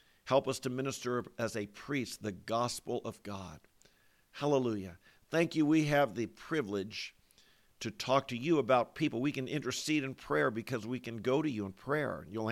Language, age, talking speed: English, 50-69, 180 wpm